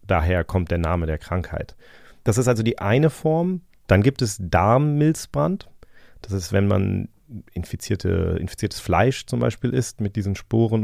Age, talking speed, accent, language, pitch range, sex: 30-49, 160 wpm, German, German, 90-105 Hz, male